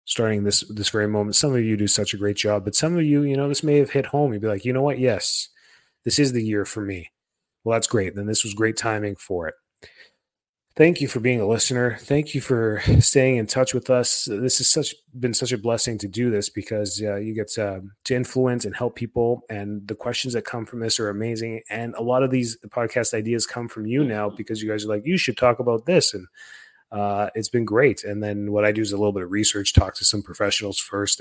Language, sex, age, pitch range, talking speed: English, male, 30-49, 100-120 Hz, 255 wpm